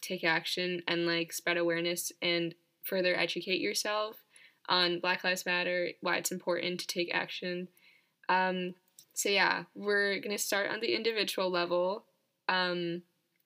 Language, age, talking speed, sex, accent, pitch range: English, 10-29, 140 wpm, female, American, 170-185 Hz